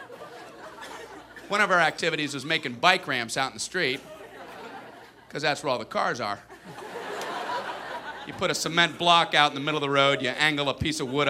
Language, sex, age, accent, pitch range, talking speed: English, male, 40-59, American, 145-195 Hz, 195 wpm